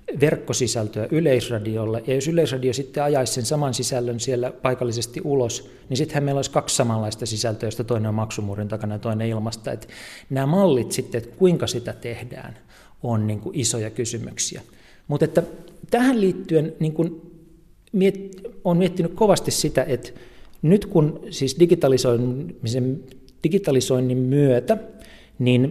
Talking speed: 140 wpm